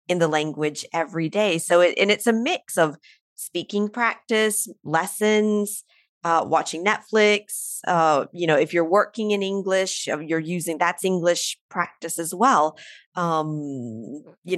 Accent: American